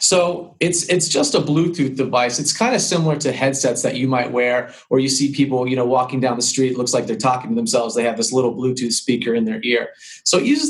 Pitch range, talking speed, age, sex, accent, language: 130-165 Hz, 250 wpm, 30-49, male, American, English